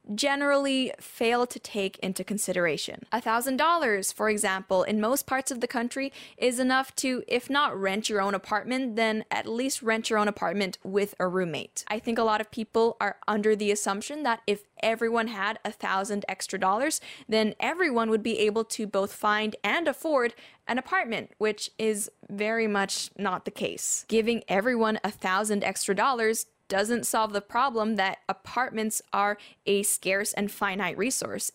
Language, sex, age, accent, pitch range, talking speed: English, female, 10-29, American, 200-235 Hz, 170 wpm